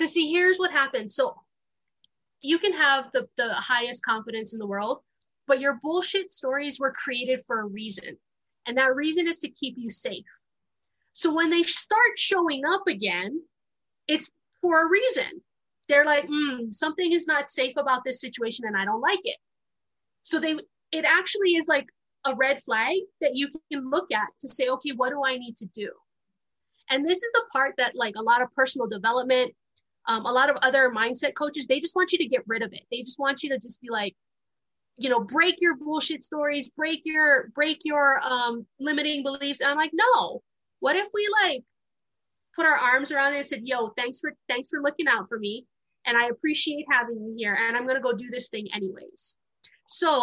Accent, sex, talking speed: American, female, 205 wpm